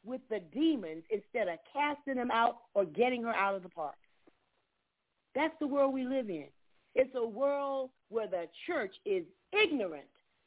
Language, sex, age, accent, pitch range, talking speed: English, female, 40-59, American, 180-250 Hz, 165 wpm